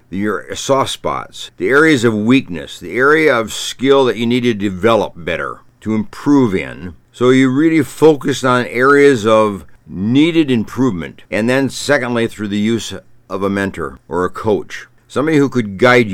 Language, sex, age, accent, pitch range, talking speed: English, male, 60-79, American, 100-130 Hz, 165 wpm